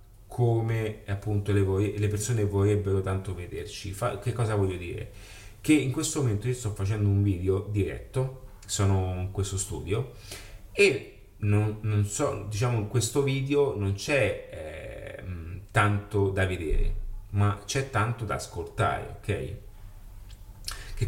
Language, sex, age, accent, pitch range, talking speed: Italian, male, 30-49, native, 95-110 Hz, 130 wpm